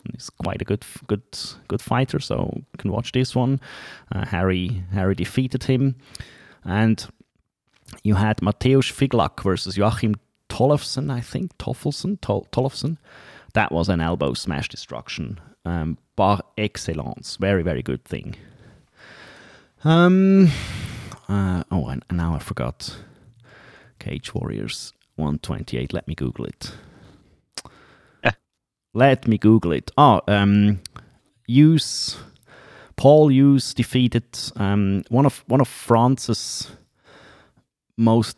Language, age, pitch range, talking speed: English, 30-49, 95-130 Hz, 115 wpm